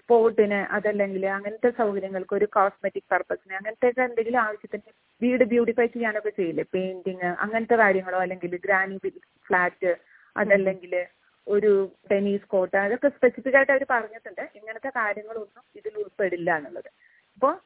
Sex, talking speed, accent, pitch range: female, 120 wpm, native, 200-245 Hz